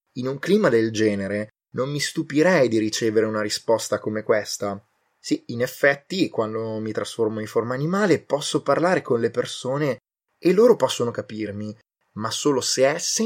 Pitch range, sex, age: 105-140 Hz, male, 20-39